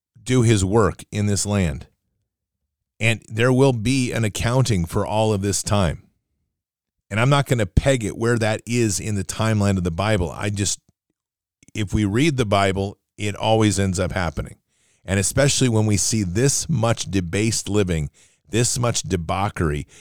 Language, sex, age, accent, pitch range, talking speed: English, male, 40-59, American, 95-120 Hz, 170 wpm